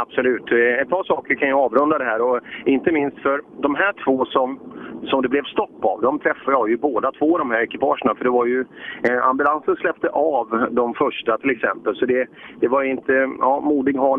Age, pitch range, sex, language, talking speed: 30-49, 115-150 Hz, male, Swedish, 215 wpm